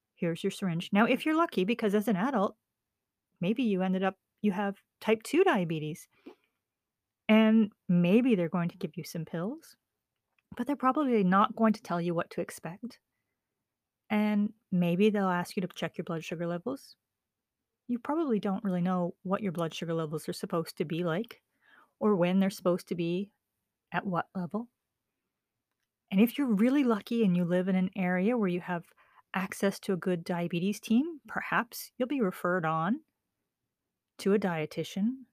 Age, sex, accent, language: 30-49, female, American, English